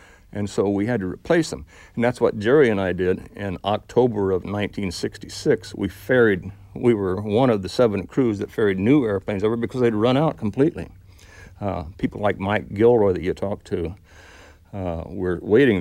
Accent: American